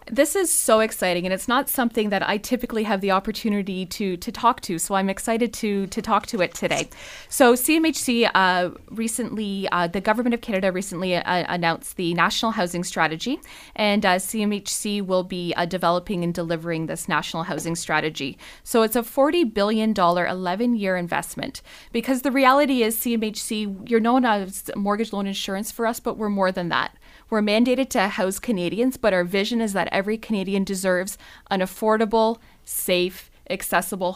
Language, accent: English, American